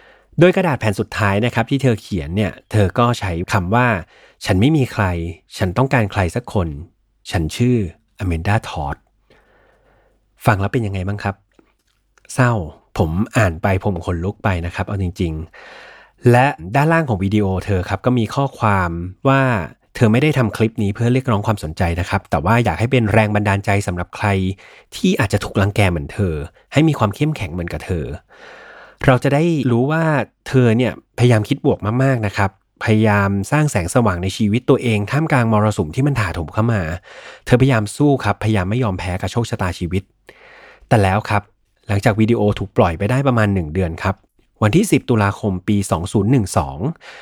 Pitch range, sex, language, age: 95-120 Hz, male, Thai, 30-49